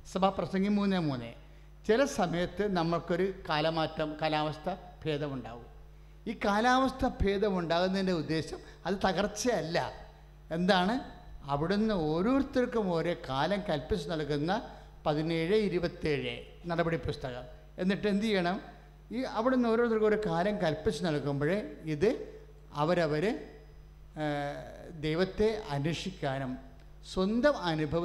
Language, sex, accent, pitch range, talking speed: English, male, Indian, 155-215 Hz, 105 wpm